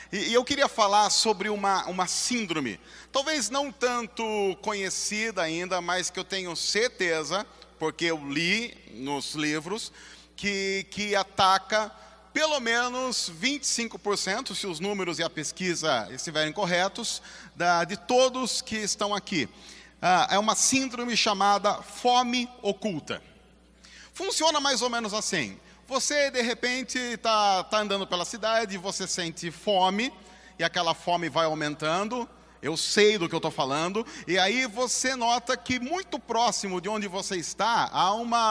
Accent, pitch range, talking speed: Brazilian, 175-235 Hz, 140 wpm